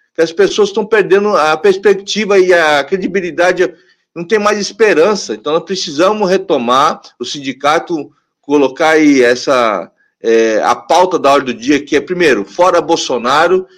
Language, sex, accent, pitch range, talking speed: Portuguese, male, Brazilian, 160-210 Hz, 150 wpm